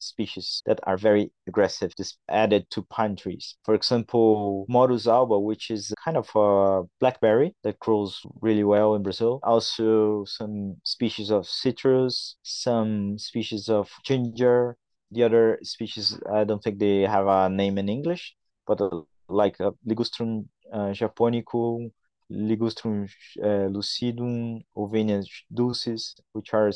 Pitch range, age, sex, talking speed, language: 100-115 Hz, 30-49, male, 130 wpm, English